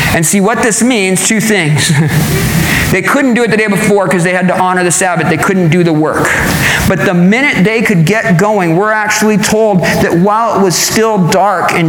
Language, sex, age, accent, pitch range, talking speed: English, male, 40-59, American, 170-240 Hz, 215 wpm